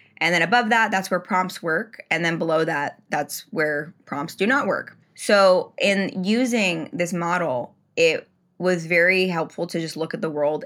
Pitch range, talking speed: 160-195 Hz, 185 wpm